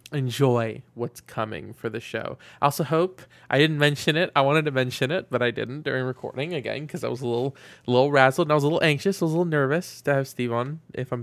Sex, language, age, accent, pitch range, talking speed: male, English, 20-39, American, 120-150 Hz, 255 wpm